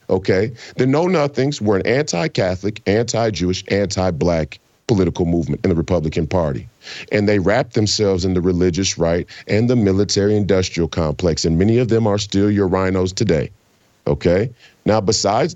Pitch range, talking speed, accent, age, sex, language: 100-145 Hz, 155 wpm, American, 40-59, male, English